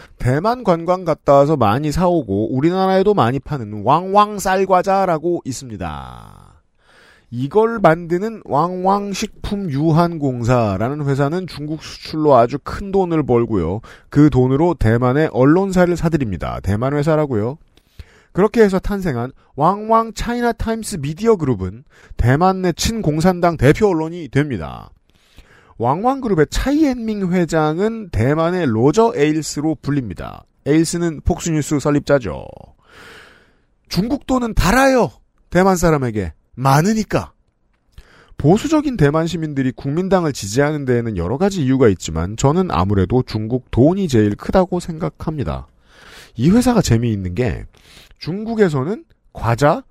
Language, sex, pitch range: Korean, male, 125-190 Hz